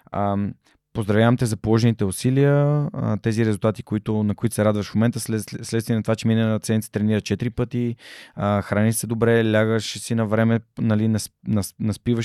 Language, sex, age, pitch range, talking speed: Bulgarian, male, 20-39, 110-140 Hz, 180 wpm